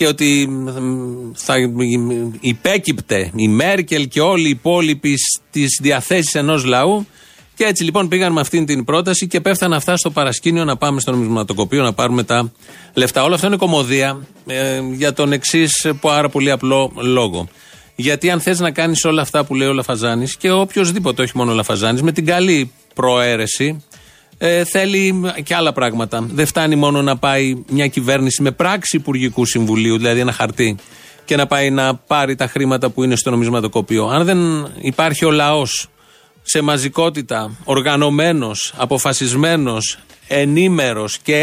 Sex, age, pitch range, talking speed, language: male, 40-59, 125-170 Hz, 160 wpm, Greek